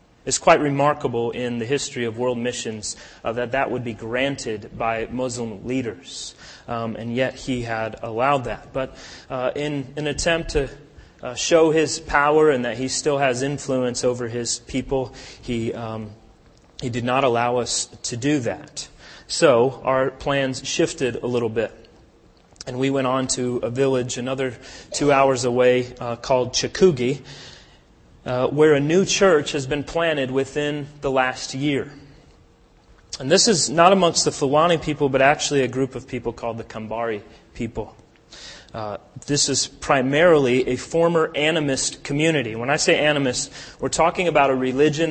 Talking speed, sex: 165 wpm, male